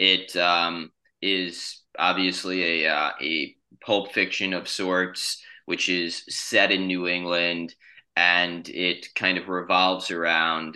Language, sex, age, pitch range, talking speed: English, male, 20-39, 85-95 Hz, 130 wpm